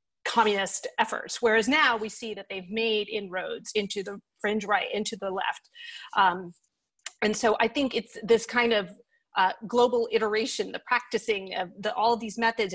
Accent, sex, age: American, female, 30-49